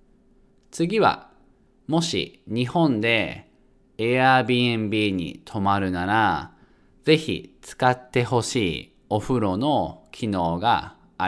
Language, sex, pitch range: Japanese, male, 95-130 Hz